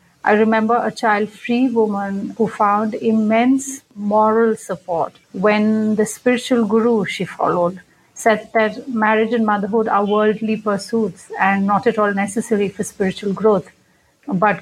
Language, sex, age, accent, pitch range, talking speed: English, female, 50-69, Indian, 205-240 Hz, 135 wpm